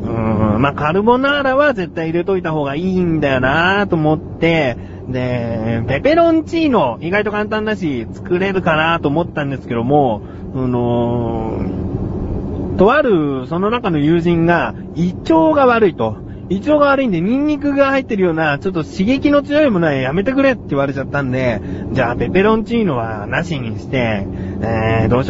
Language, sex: Japanese, male